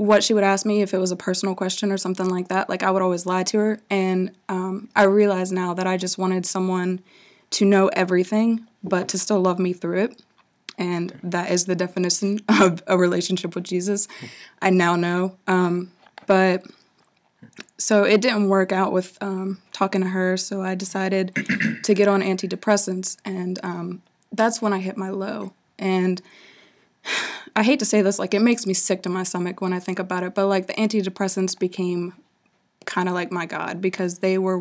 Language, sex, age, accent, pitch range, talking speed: English, female, 20-39, American, 180-200 Hz, 200 wpm